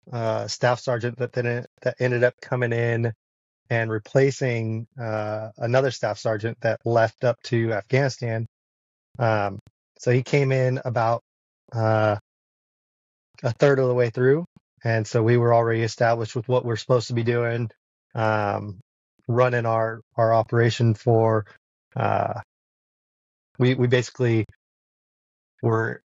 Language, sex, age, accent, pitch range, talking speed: English, male, 20-39, American, 110-125 Hz, 130 wpm